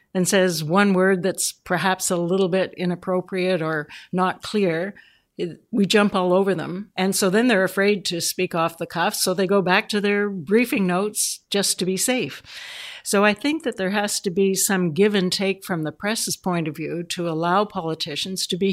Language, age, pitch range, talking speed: English, 60-79, 175-205 Hz, 200 wpm